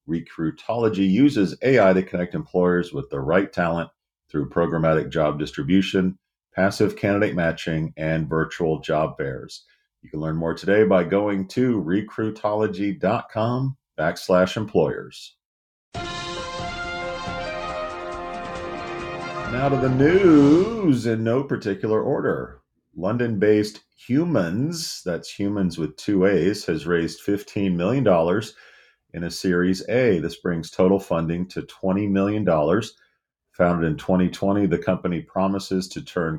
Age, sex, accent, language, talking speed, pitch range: 40-59, male, American, English, 115 wpm, 85-105 Hz